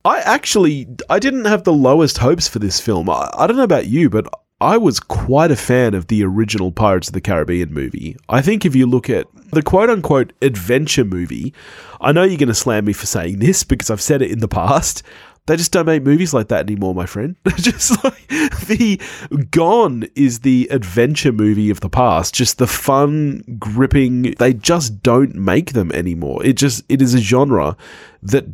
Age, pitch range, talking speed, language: 30-49, 100-145 Hz, 200 wpm, English